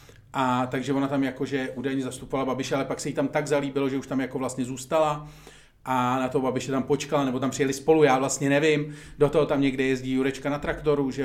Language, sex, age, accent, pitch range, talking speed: Czech, male, 40-59, native, 125-150 Hz, 230 wpm